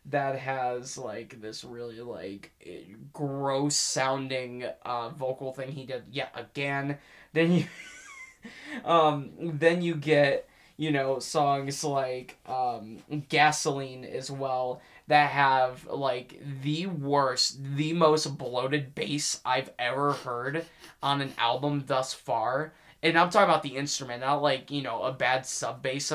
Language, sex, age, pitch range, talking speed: English, male, 20-39, 130-155 Hz, 135 wpm